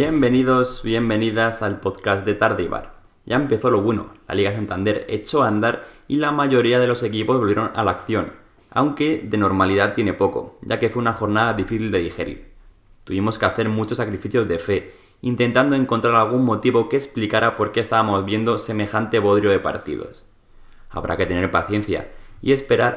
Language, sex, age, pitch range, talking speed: Spanish, male, 20-39, 105-125 Hz, 170 wpm